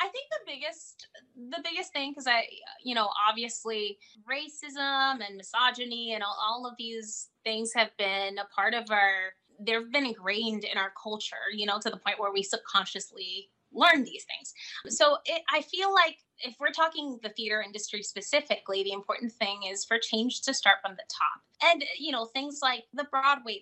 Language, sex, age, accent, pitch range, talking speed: English, female, 20-39, American, 205-270 Hz, 190 wpm